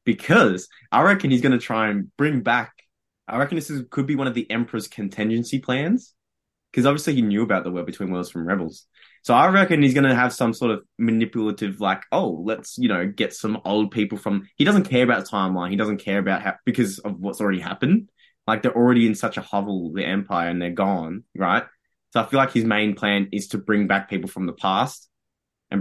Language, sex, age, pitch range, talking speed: English, male, 20-39, 100-125 Hz, 225 wpm